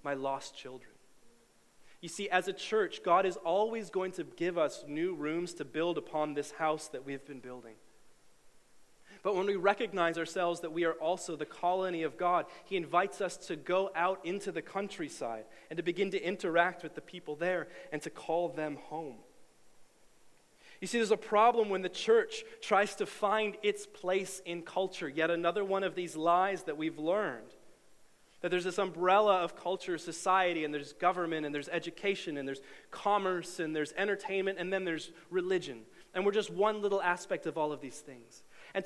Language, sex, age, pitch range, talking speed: English, male, 30-49, 165-205 Hz, 185 wpm